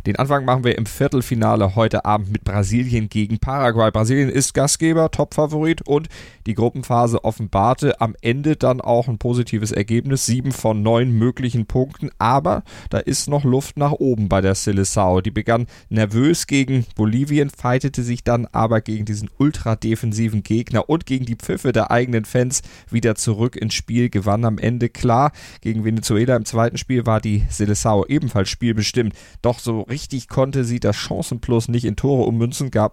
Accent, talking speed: German, 170 wpm